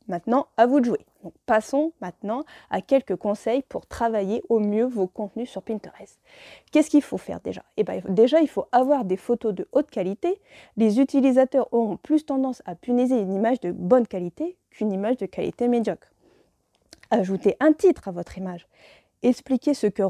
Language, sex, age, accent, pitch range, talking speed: French, female, 20-39, French, 200-260 Hz, 175 wpm